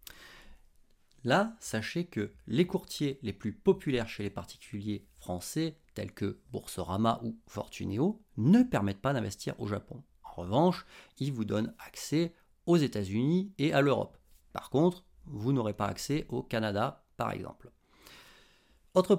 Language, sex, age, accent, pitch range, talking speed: French, male, 40-59, French, 105-165 Hz, 145 wpm